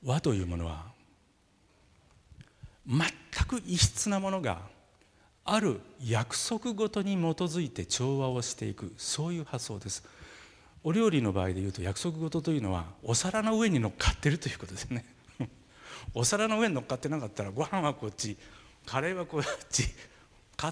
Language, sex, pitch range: Japanese, male, 100-145 Hz